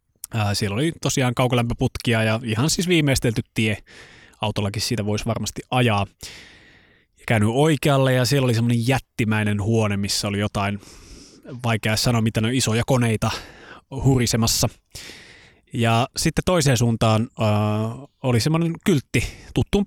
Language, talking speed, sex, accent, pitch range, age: Finnish, 125 wpm, male, native, 105-135 Hz, 20-39